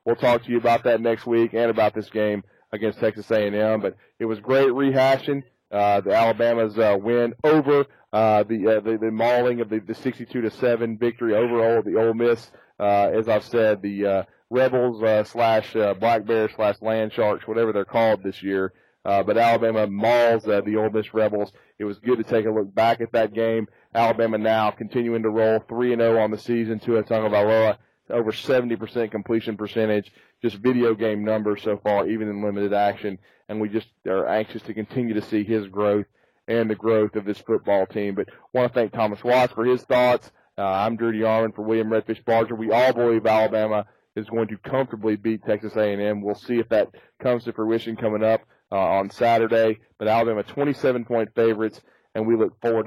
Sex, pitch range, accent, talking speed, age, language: male, 105-115 Hz, American, 200 wpm, 30-49, English